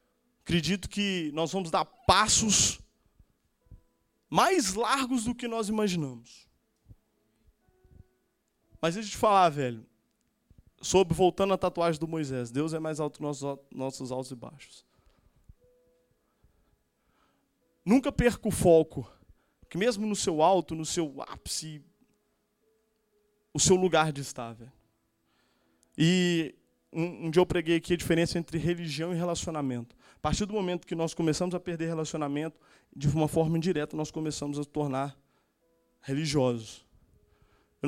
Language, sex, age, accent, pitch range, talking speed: Portuguese, male, 20-39, Brazilian, 145-205 Hz, 135 wpm